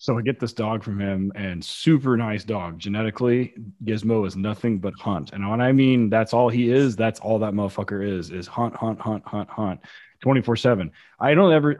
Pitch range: 95-125 Hz